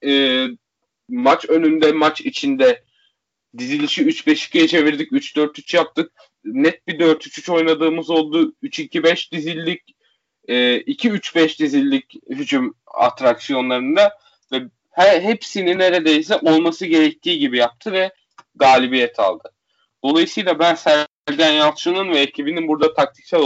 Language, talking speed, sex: Turkish, 95 wpm, male